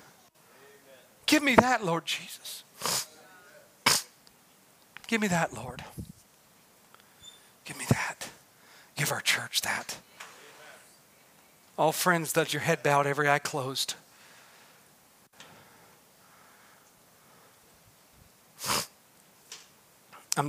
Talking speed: 75 wpm